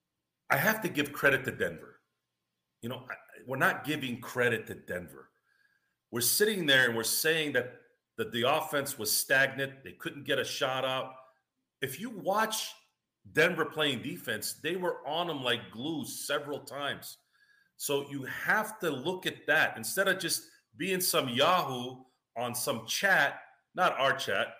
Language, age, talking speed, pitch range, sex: English, 40-59, 165 wpm, 125-180 Hz, male